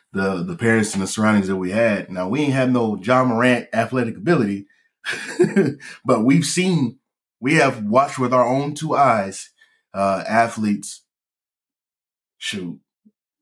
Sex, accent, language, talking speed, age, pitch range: male, American, English, 145 wpm, 20-39, 100-125 Hz